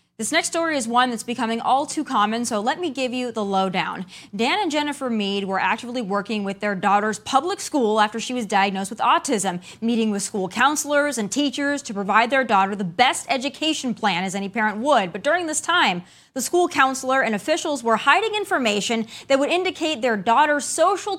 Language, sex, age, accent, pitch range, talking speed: English, female, 20-39, American, 220-305 Hz, 200 wpm